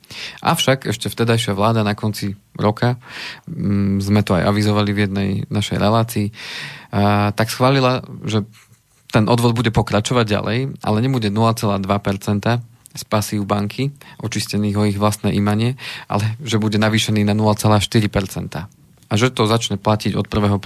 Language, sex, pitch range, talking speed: Slovak, male, 100-115 Hz, 140 wpm